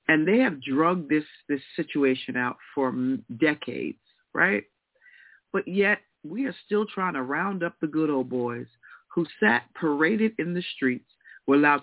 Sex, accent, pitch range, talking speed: female, American, 155-225 Hz, 160 wpm